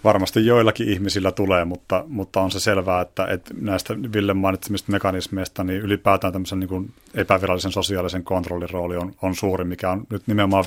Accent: native